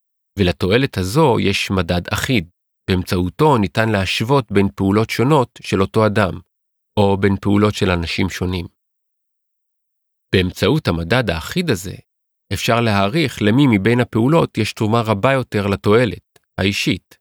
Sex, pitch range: male, 95-120 Hz